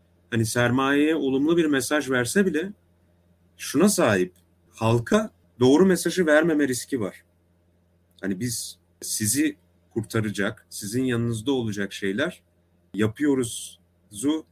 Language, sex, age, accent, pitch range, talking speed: Turkish, male, 40-59, native, 90-130 Hz, 100 wpm